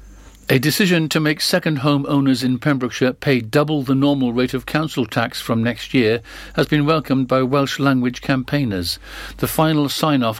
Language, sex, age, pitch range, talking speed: English, male, 60-79, 115-135 Hz, 165 wpm